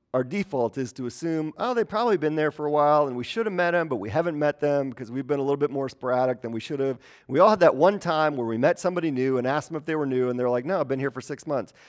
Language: English